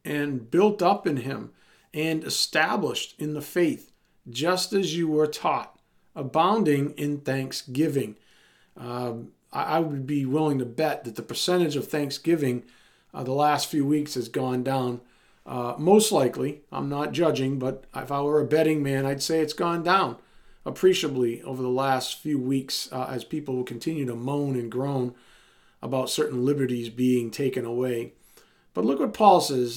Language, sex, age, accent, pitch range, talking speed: English, male, 40-59, American, 135-190 Hz, 165 wpm